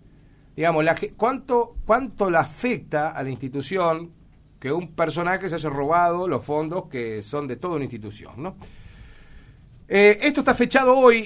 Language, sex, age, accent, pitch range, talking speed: Spanish, male, 50-69, Argentinian, 145-200 Hz, 160 wpm